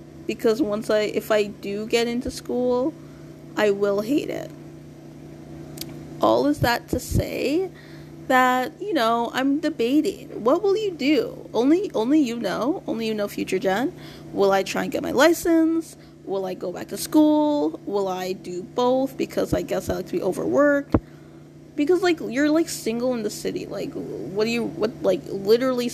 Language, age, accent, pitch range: English, 20-39, American, 195-280 Hz